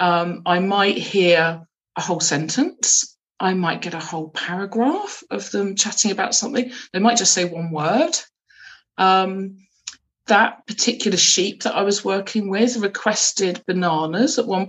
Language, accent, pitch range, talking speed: English, British, 175-220 Hz, 150 wpm